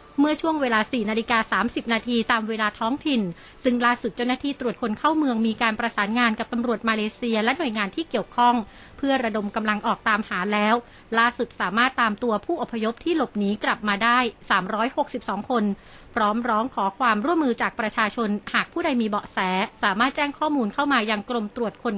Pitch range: 215-255 Hz